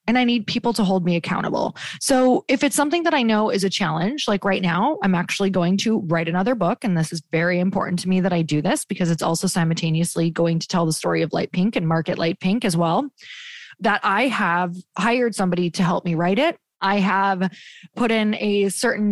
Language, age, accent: English, 20-39, American